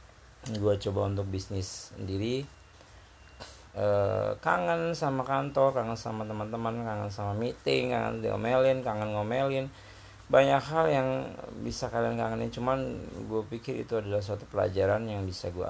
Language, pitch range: Indonesian, 95-115 Hz